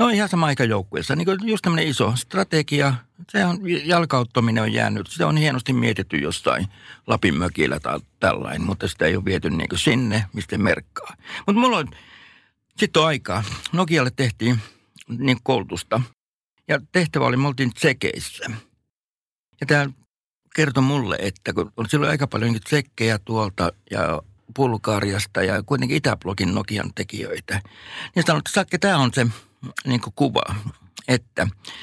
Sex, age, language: male, 60-79, Finnish